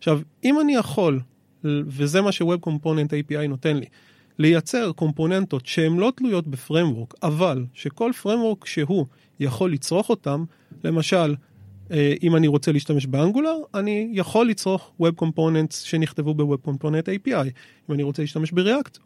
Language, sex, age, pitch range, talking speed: Hebrew, male, 30-49, 145-190 Hz, 140 wpm